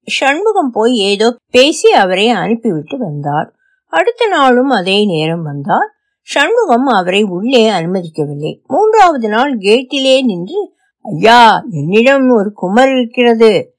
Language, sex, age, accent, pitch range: Tamil, female, 60-79, native, 195-290 Hz